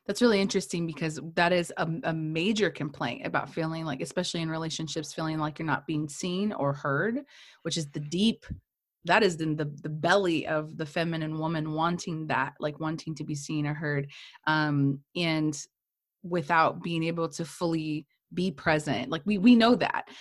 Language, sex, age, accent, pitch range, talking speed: English, female, 20-39, American, 155-185 Hz, 180 wpm